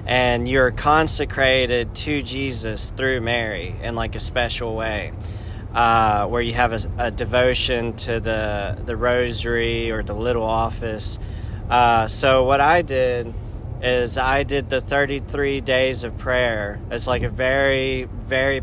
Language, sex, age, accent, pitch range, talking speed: English, male, 20-39, American, 110-125 Hz, 145 wpm